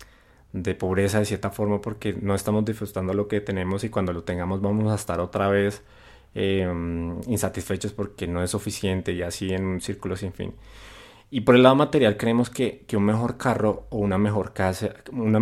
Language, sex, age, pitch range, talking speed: Spanish, male, 20-39, 95-110 Hz, 195 wpm